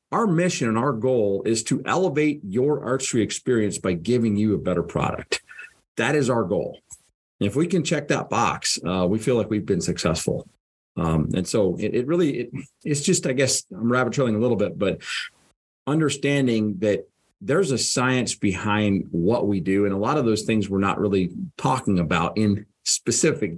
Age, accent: 40-59, American